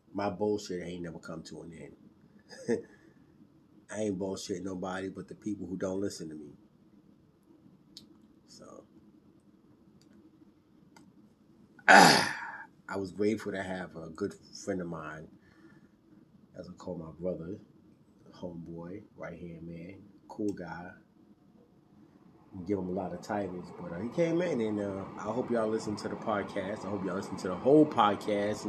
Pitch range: 95-110 Hz